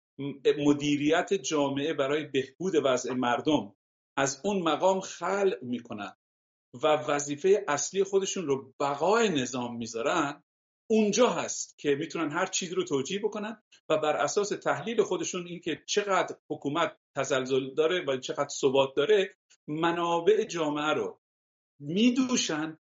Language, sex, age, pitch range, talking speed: English, male, 50-69, 140-205 Hz, 120 wpm